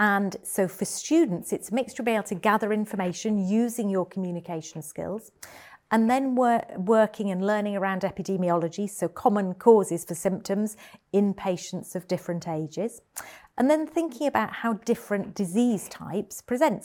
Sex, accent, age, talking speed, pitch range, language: female, British, 40-59, 155 wpm, 180-225 Hz, English